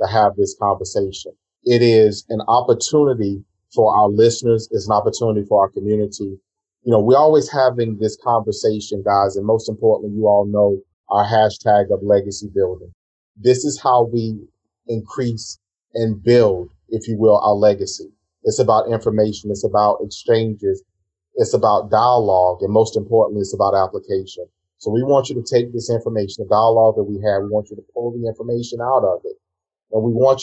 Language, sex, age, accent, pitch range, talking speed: English, male, 30-49, American, 100-115 Hz, 175 wpm